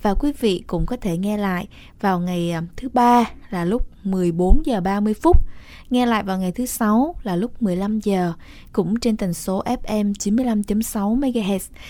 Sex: female